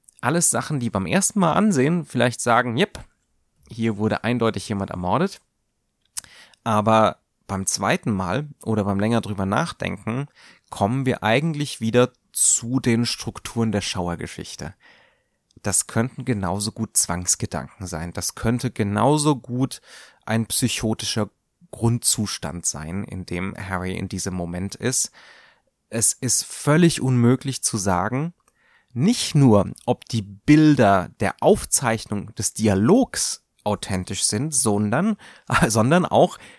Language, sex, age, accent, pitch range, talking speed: German, male, 30-49, German, 105-135 Hz, 120 wpm